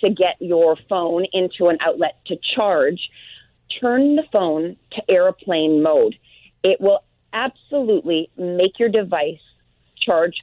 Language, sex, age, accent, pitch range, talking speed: English, female, 40-59, American, 165-215 Hz, 125 wpm